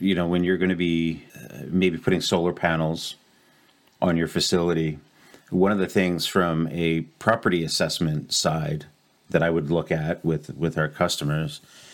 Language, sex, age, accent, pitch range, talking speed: English, male, 40-59, American, 80-90 Hz, 155 wpm